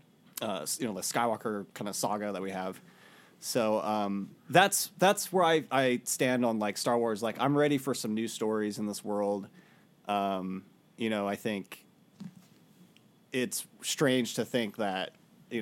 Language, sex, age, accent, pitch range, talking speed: English, male, 30-49, American, 105-135 Hz, 170 wpm